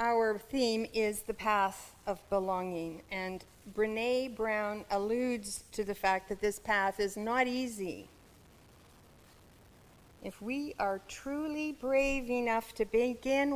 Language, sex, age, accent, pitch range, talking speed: English, female, 50-69, American, 185-240 Hz, 125 wpm